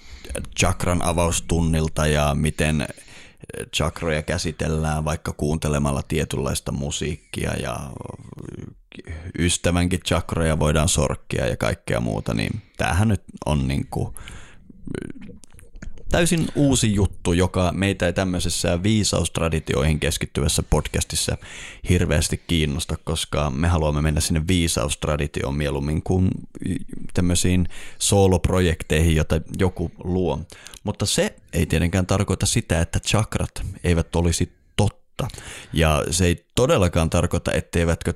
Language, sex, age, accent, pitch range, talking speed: Finnish, male, 30-49, native, 80-95 Hz, 100 wpm